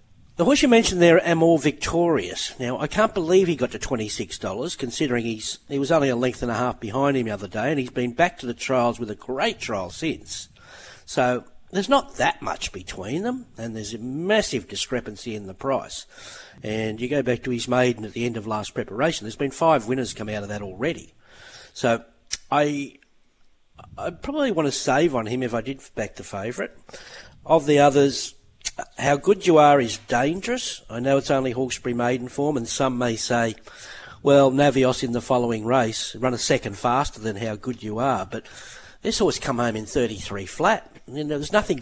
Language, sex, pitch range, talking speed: English, male, 115-145 Hz, 205 wpm